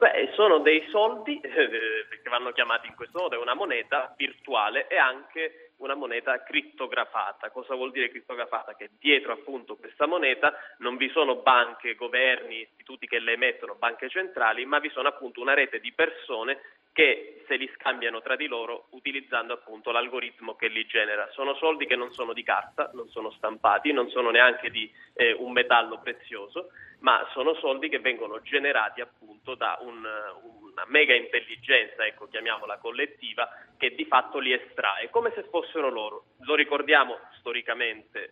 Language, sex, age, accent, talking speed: Italian, male, 30-49, native, 165 wpm